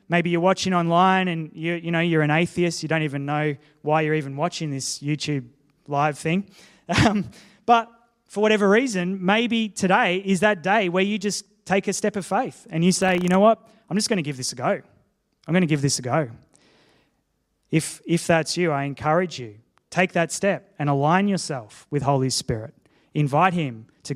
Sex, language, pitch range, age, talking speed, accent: male, English, 135-185 Hz, 20-39, 200 wpm, Australian